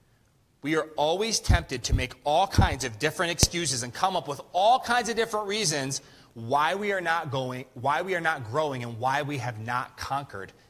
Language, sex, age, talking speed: English, male, 30-49, 200 wpm